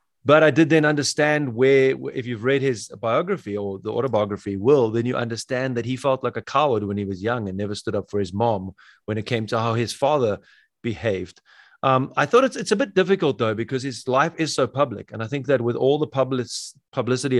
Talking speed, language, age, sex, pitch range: 230 wpm, English, 30-49, male, 110-135 Hz